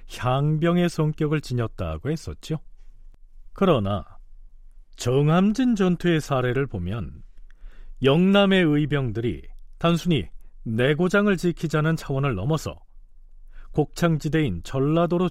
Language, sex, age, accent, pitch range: Korean, male, 40-59, native, 110-165 Hz